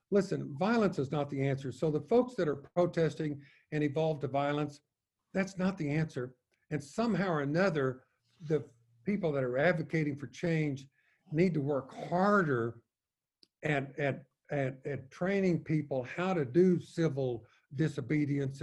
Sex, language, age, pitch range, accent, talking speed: male, English, 60-79, 135-170 Hz, American, 140 wpm